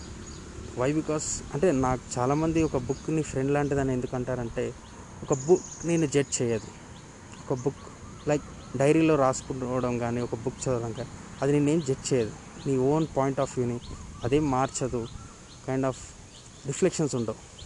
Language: Telugu